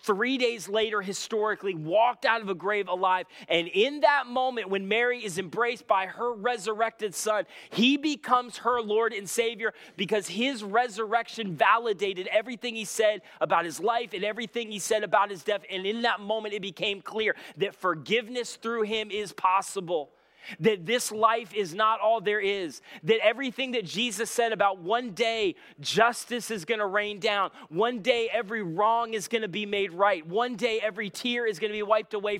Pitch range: 200-235 Hz